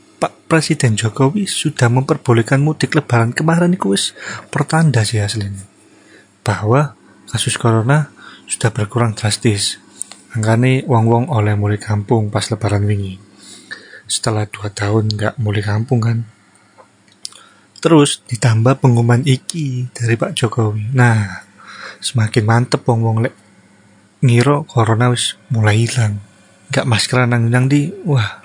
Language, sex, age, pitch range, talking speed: Indonesian, male, 30-49, 110-140 Hz, 115 wpm